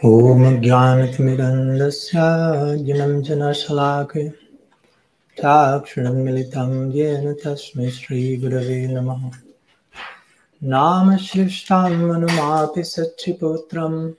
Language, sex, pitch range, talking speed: English, male, 130-160 Hz, 55 wpm